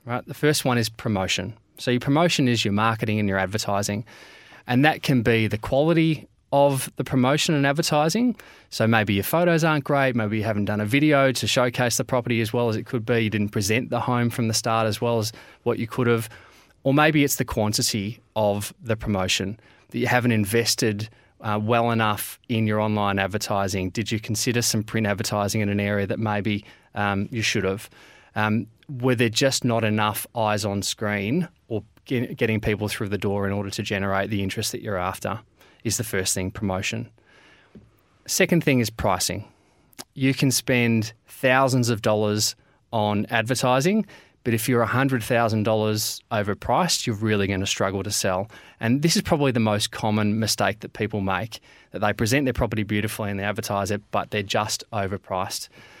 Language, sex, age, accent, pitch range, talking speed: English, male, 20-39, Australian, 105-125 Hz, 190 wpm